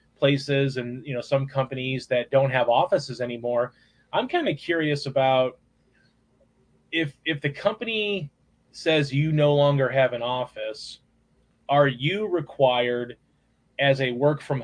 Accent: American